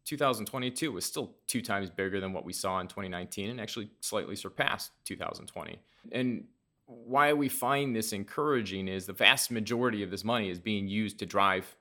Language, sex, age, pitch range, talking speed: English, male, 30-49, 100-115 Hz, 180 wpm